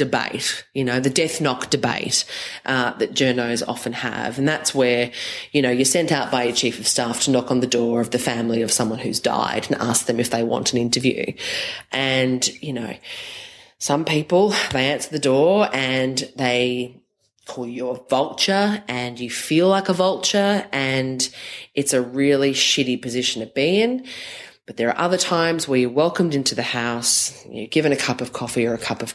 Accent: Australian